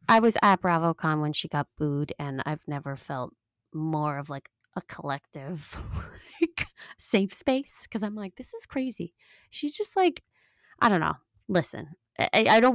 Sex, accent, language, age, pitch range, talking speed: female, American, English, 20-39, 160-210 Hz, 165 wpm